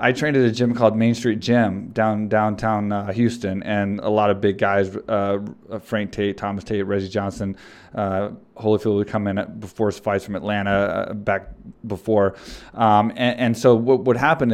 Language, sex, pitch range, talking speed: English, male, 105-120 Hz, 195 wpm